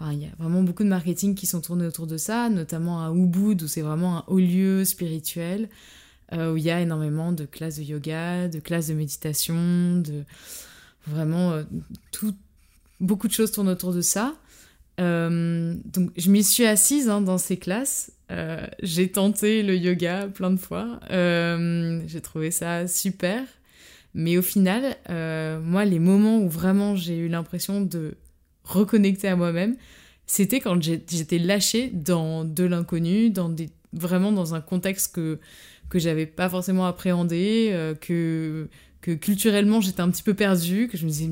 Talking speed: 175 wpm